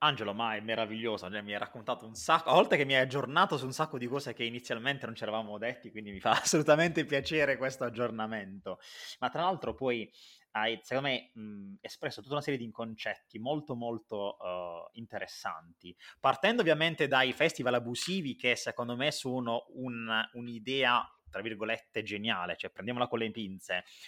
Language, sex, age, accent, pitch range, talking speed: Italian, male, 20-39, native, 115-145 Hz, 175 wpm